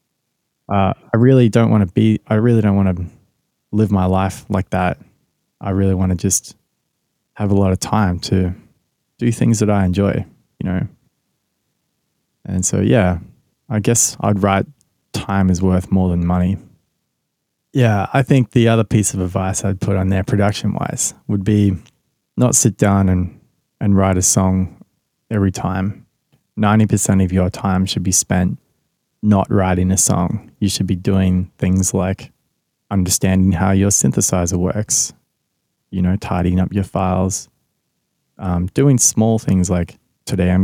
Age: 20-39